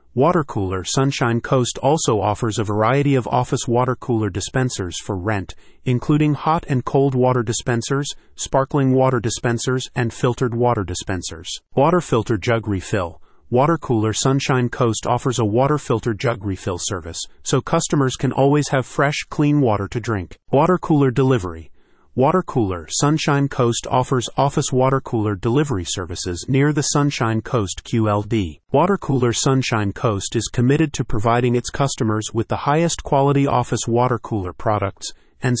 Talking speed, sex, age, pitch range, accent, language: 150 wpm, male, 30-49, 110-135 Hz, American, English